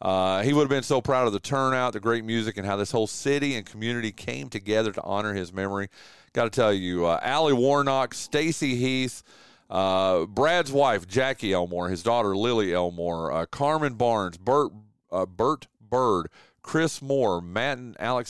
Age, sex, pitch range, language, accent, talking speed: 40-59, male, 100-130 Hz, English, American, 185 wpm